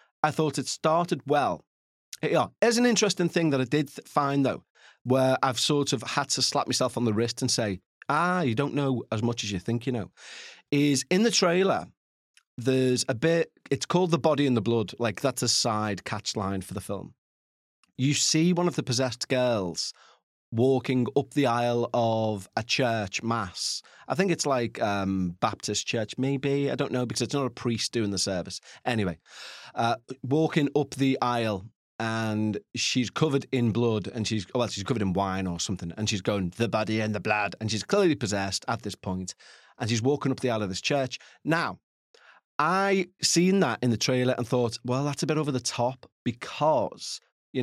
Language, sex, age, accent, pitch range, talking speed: English, male, 30-49, British, 110-140 Hz, 200 wpm